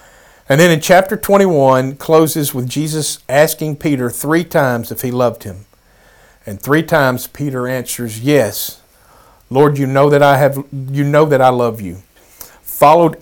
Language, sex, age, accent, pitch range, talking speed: English, male, 50-69, American, 120-160 Hz, 160 wpm